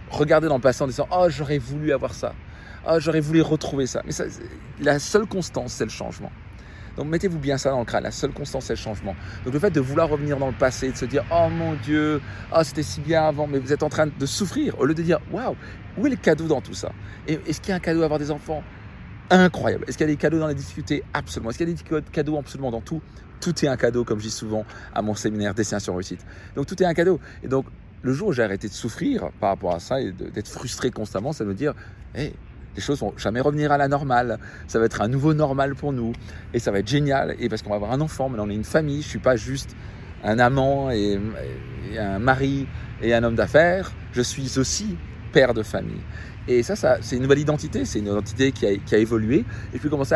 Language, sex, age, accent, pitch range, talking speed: French, male, 40-59, French, 110-150 Hz, 265 wpm